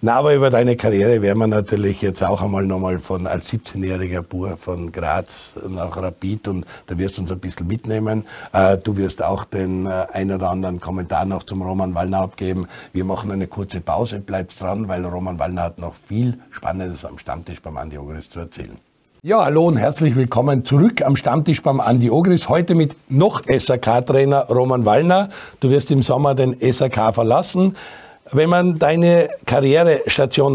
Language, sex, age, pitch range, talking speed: German, male, 60-79, 95-145 Hz, 175 wpm